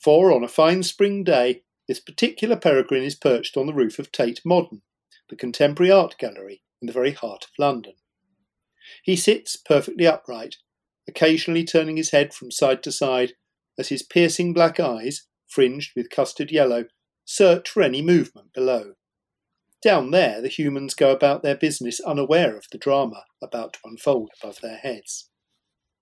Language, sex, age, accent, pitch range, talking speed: English, male, 50-69, British, 125-170 Hz, 165 wpm